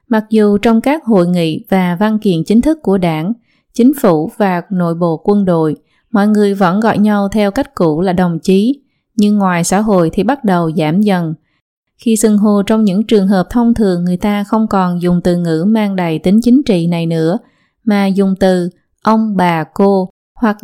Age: 20-39